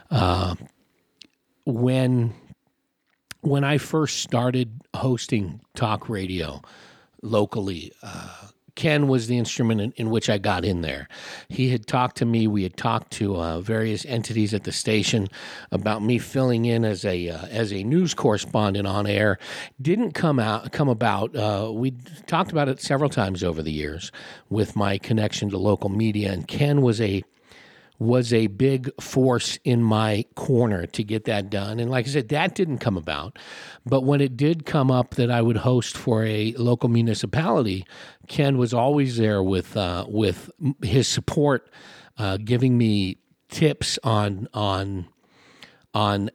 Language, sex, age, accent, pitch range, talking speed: English, male, 50-69, American, 105-130 Hz, 160 wpm